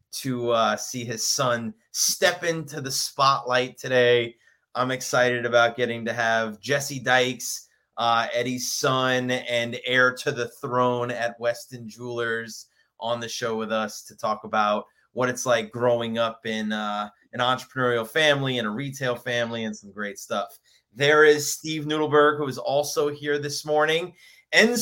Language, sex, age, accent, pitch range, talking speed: English, male, 30-49, American, 120-150 Hz, 160 wpm